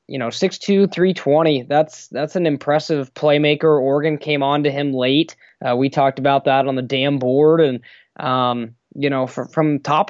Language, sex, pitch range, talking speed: English, male, 130-155 Hz, 185 wpm